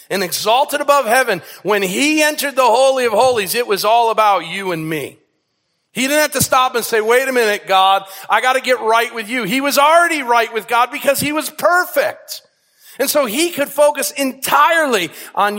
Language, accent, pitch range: English, American, 210-280 Hz